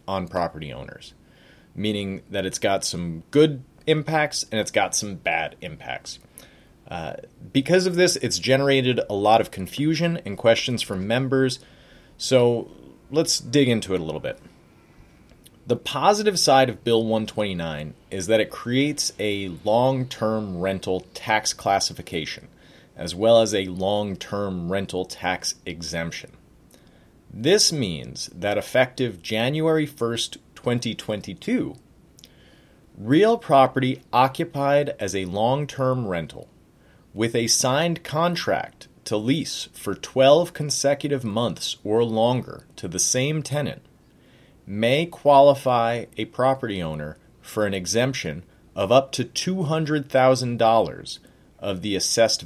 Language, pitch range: English, 100-140 Hz